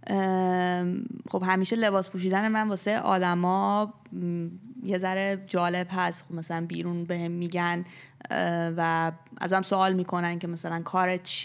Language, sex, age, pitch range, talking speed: Persian, female, 20-39, 175-195 Hz, 130 wpm